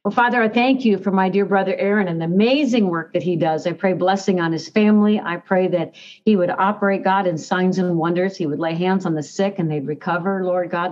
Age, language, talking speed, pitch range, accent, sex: 60-79, English, 255 wpm, 170-210 Hz, American, female